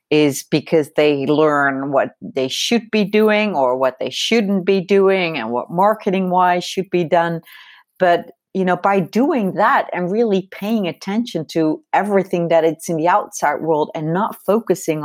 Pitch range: 155-210 Hz